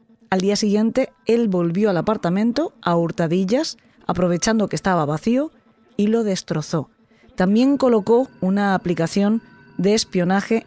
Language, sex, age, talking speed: Spanish, female, 20-39, 125 wpm